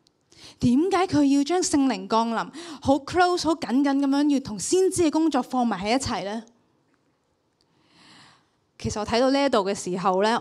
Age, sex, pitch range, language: 20-39, female, 235-330 Hz, Chinese